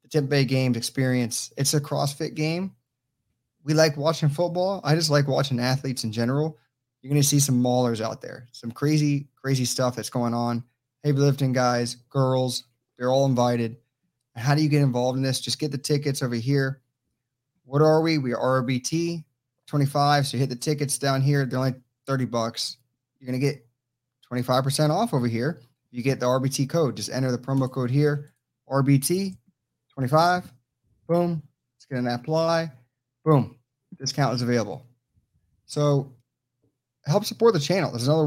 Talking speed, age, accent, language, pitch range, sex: 170 wpm, 30-49, American, English, 125-145 Hz, male